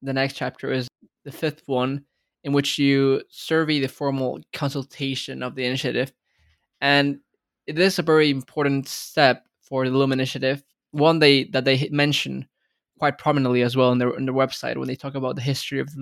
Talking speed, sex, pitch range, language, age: 190 wpm, male, 130-145 Hz, English, 20-39